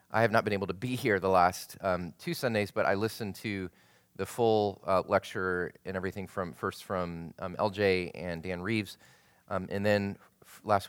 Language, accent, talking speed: English, American, 195 wpm